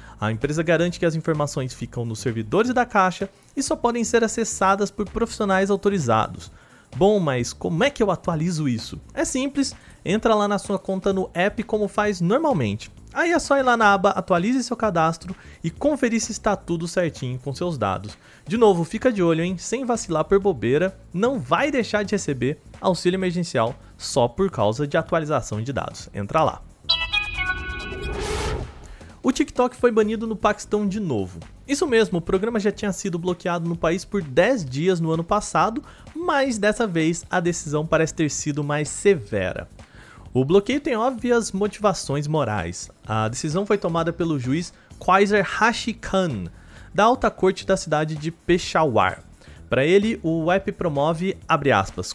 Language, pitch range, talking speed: Portuguese, 150-215 Hz, 170 wpm